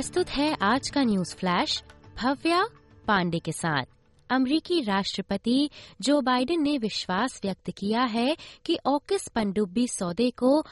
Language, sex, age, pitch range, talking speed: Hindi, female, 20-39, 200-285 Hz, 135 wpm